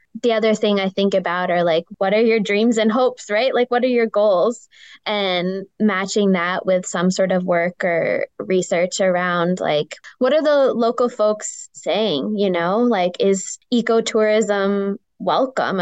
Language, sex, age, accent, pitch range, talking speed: English, female, 10-29, American, 175-210 Hz, 165 wpm